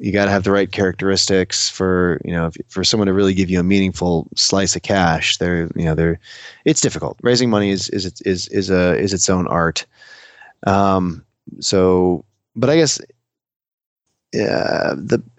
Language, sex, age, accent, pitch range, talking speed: English, male, 20-39, American, 90-115 Hz, 175 wpm